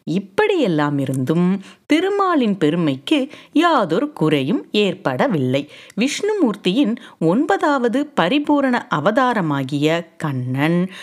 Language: Tamil